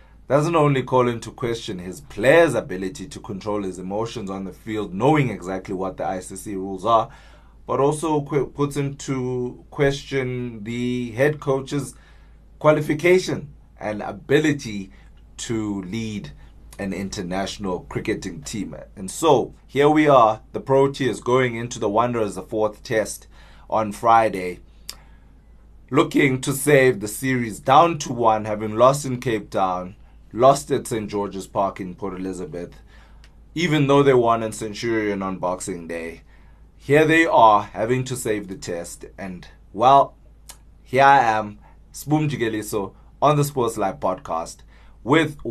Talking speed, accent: 140 wpm, South African